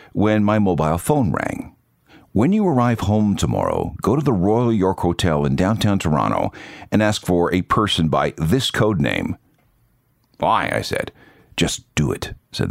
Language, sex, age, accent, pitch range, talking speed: English, male, 50-69, American, 85-110 Hz, 165 wpm